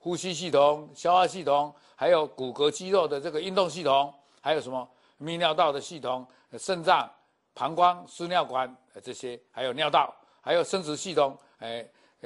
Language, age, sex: Chinese, 50-69, male